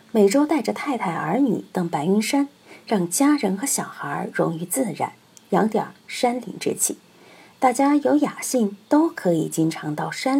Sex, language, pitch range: female, Chinese, 185-275 Hz